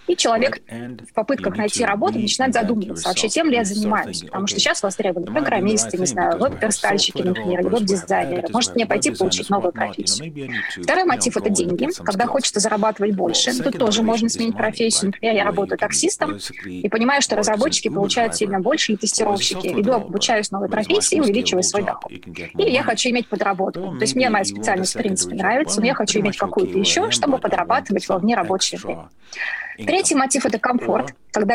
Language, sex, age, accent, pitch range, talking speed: Russian, female, 20-39, native, 195-240 Hz, 190 wpm